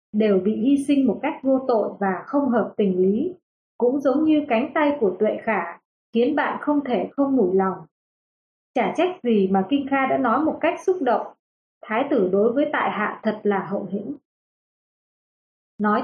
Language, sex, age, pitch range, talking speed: Vietnamese, female, 20-39, 210-280 Hz, 190 wpm